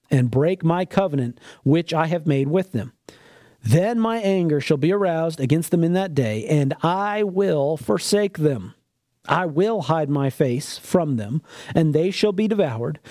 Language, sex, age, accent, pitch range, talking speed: English, male, 40-59, American, 140-205 Hz, 175 wpm